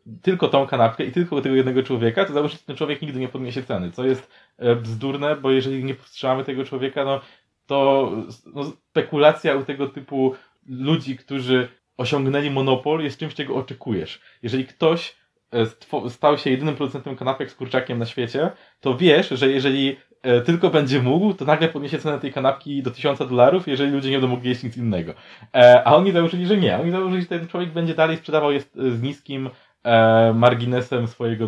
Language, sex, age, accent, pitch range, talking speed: Polish, male, 20-39, native, 120-145 Hz, 185 wpm